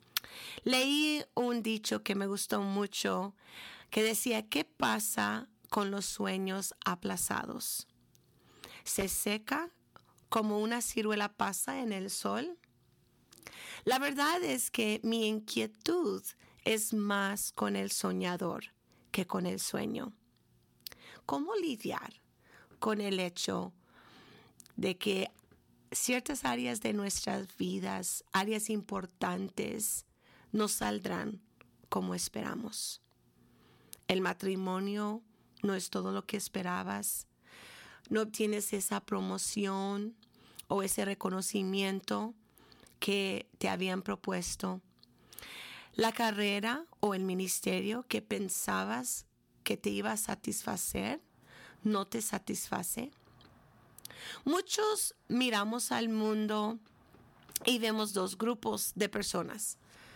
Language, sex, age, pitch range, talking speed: Spanish, female, 30-49, 185-225 Hz, 100 wpm